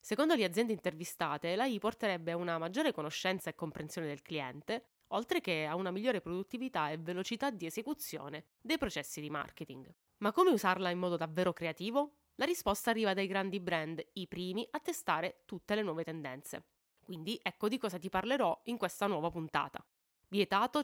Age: 20-39